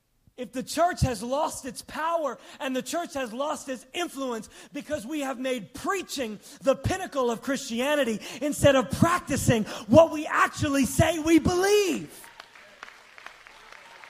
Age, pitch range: 30-49, 215-310 Hz